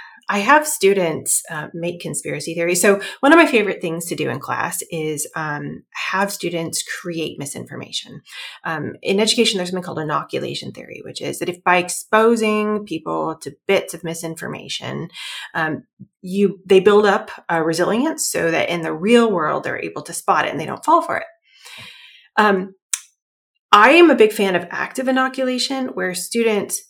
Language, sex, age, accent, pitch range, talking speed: English, female, 30-49, American, 175-230 Hz, 170 wpm